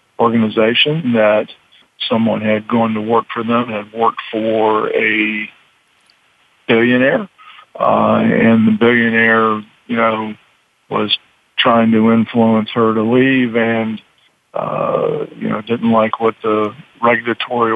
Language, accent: English, American